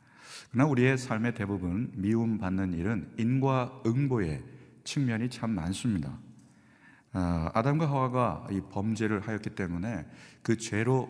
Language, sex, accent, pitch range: Korean, male, native, 95-130 Hz